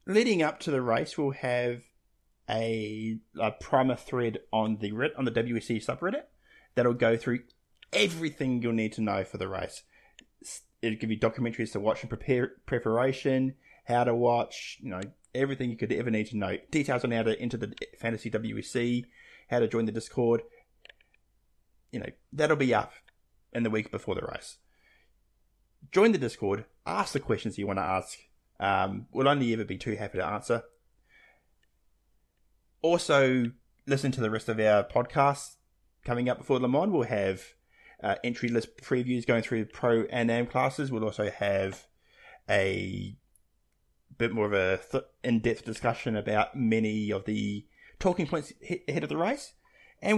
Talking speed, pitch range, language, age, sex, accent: 165 wpm, 110-130 Hz, English, 20-39, male, Australian